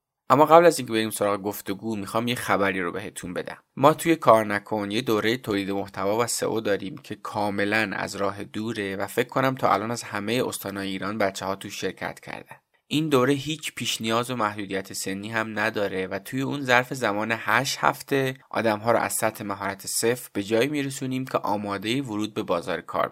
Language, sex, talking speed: Persian, male, 190 wpm